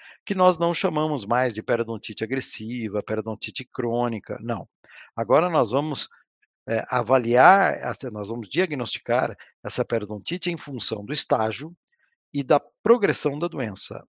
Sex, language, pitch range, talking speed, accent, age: male, Portuguese, 115-160 Hz, 125 wpm, Brazilian, 60-79